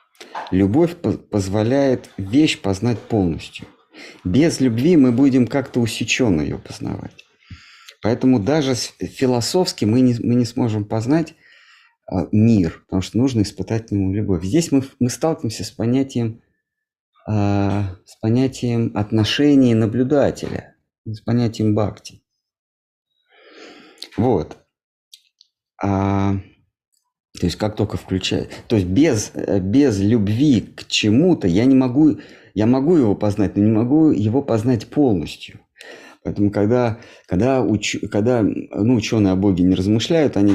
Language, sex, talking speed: Russian, male, 115 wpm